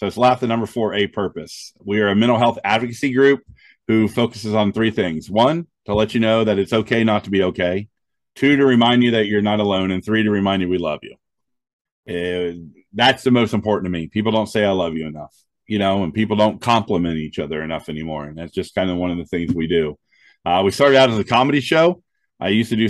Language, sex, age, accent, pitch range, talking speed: English, male, 40-59, American, 95-115 Hz, 245 wpm